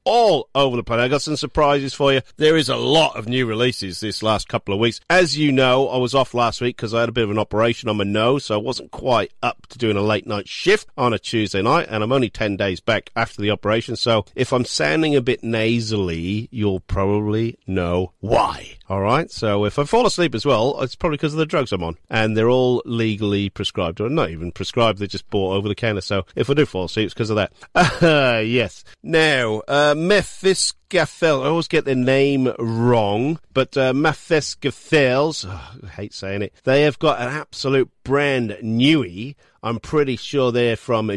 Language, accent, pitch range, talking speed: English, British, 105-140 Hz, 215 wpm